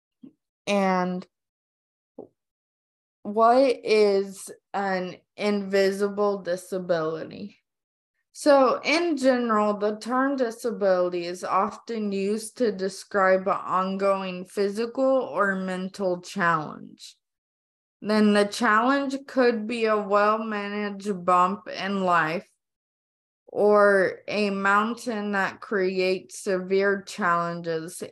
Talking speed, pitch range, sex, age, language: 85 wpm, 180-215 Hz, female, 20-39, English